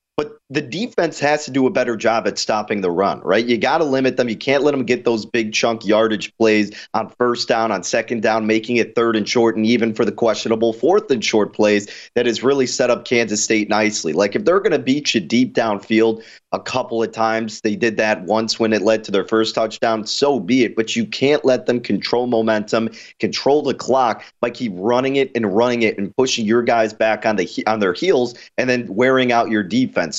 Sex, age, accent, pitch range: male, 30-49, American, 110-130 Hz